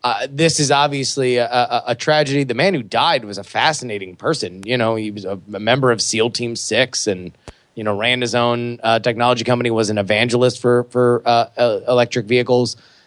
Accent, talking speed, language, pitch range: American, 200 wpm, English, 110-130 Hz